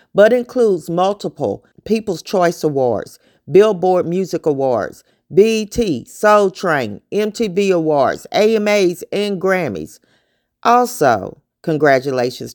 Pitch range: 155-200 Hz